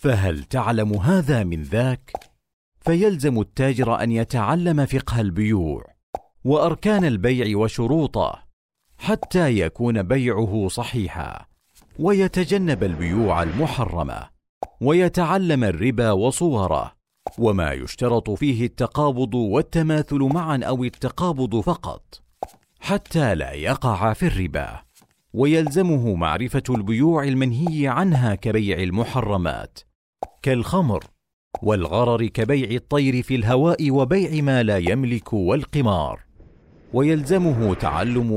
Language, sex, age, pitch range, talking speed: Arabic, male, 50-69, 100-145 Hz, 90 wpm